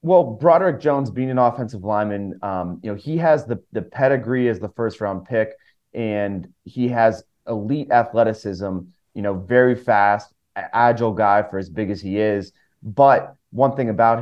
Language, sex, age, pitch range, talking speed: English, male, 30-49, 105-125 Hz, 175 wpm